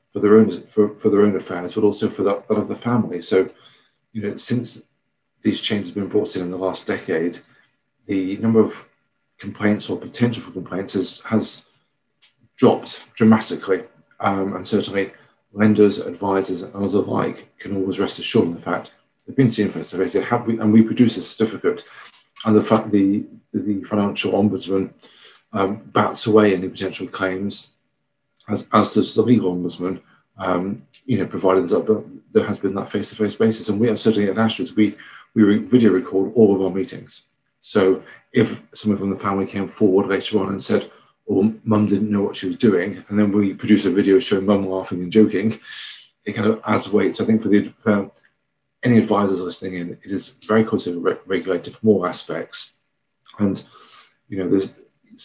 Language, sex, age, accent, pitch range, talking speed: English, male, 40-59, British, 95-110 Hz, 185 wpm